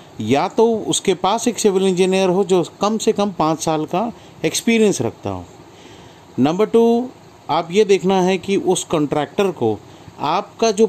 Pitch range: 150-205 Hz